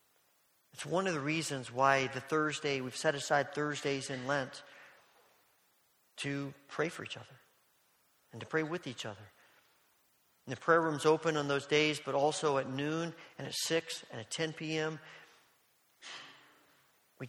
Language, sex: English, male